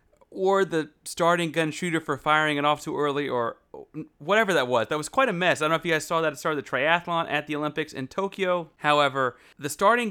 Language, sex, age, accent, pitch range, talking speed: English, male, 30-49, American, 140-180 Hz, 235 wpm